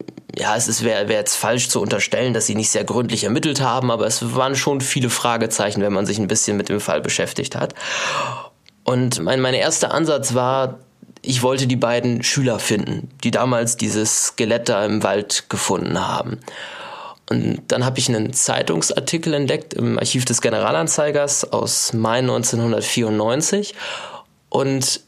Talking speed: 155 wpm